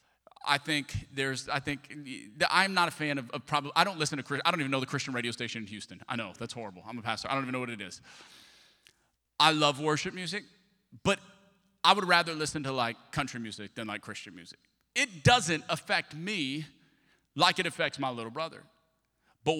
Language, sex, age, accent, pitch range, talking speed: English, male, 30-49, American, 135-205 Hz, 210 wpm